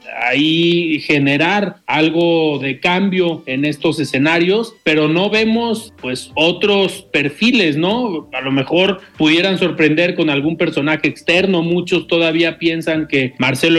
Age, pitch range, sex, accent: 40-59, 150-185 Hz, male, Mexican